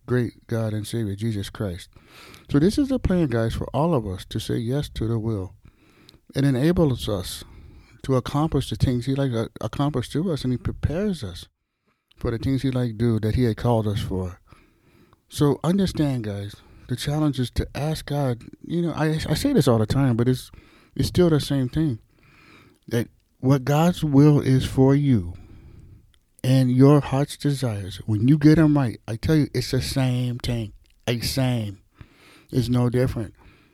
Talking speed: 190 wpm